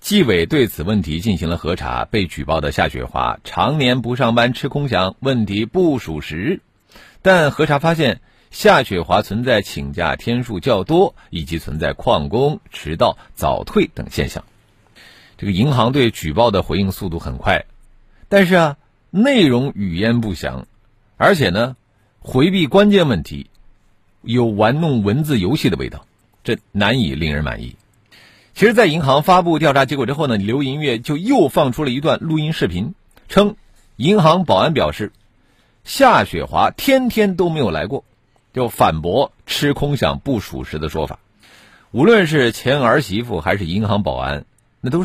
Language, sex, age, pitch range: Chinese, male, 50-69, 95-145 Hz